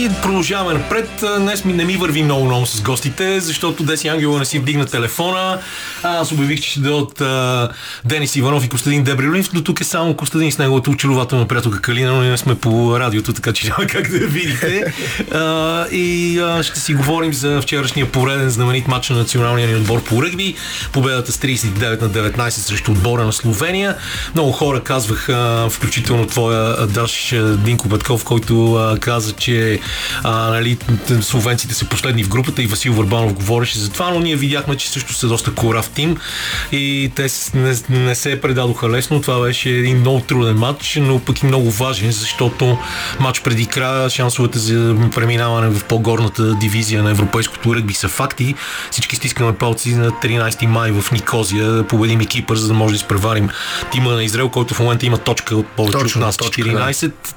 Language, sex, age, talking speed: Bulgarian, male, 30-49, 170 wpm